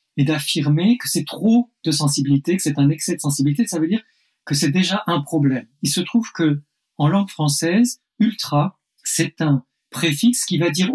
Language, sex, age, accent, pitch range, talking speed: French, male, 50-69, French, 140-180 Hz, 185 wpm